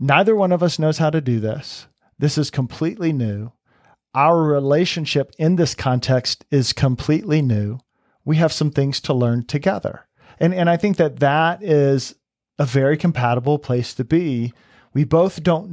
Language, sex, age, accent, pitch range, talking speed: English, male, 40-59, American, 125-160 Hz, 170 wpm